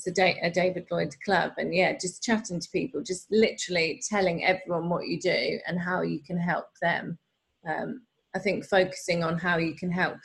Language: Swedish